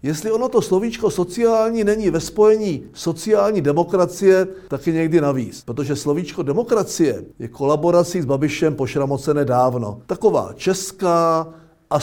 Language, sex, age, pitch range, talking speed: Czech, male, 50-69, 125-165 Hz, 130 wpm